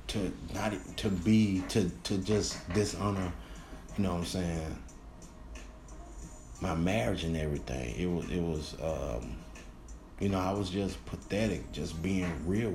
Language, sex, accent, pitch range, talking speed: English, male, American, 80-100 Hz, 145 wpm